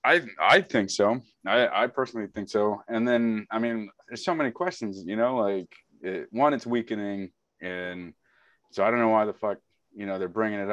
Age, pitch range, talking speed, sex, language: 20-39, 95-115 Hz, 205 wpm, male, English